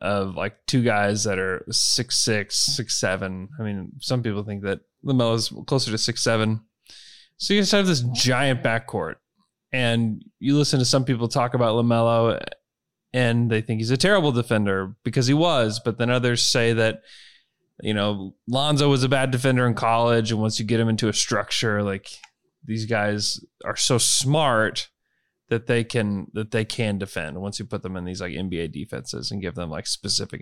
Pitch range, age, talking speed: 105-135 Hz, 20-39, 190 wpm